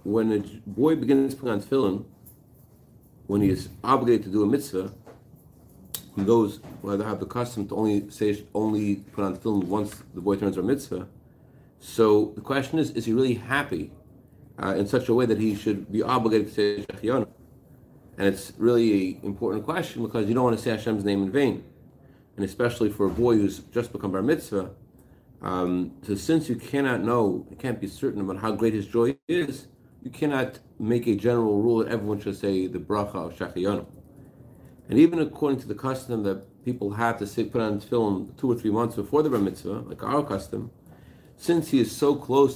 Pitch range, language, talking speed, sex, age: 105-130 Hz, English, 200 wpm, male, 40-59